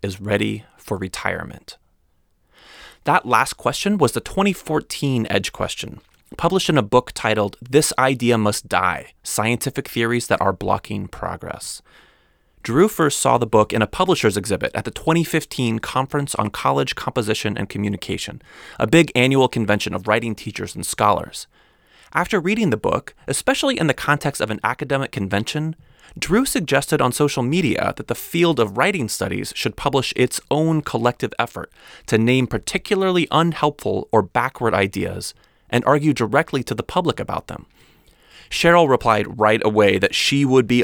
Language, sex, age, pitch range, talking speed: English, male, 20-39, 105-145 Hz, 155 wpm